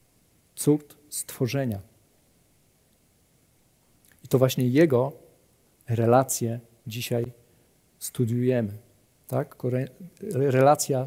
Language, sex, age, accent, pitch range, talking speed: Polish, male, 40-59, native, 115-140 Hz, 55 wpm